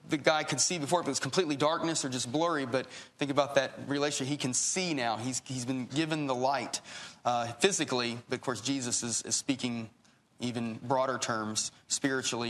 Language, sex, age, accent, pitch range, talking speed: English, male, 30-49, American, 120-150 Hz, 195 wpm